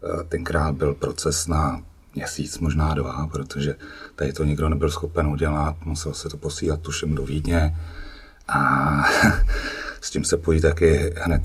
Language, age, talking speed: Czech, 40-59, 145 wpm